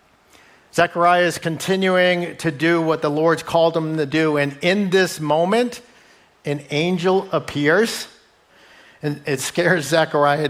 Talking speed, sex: 130 wpm, male